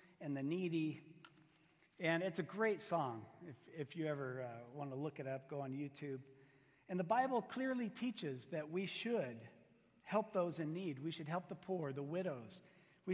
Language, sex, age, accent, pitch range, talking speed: English, male, 50-69, American, 145-190 Hz, 185 wpm